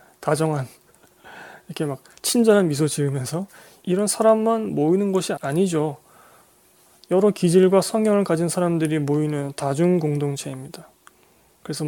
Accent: native